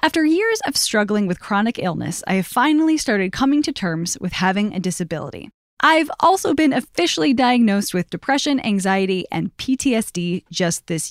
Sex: female